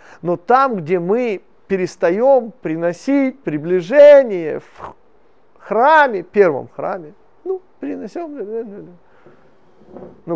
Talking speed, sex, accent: 80 wpm, male, native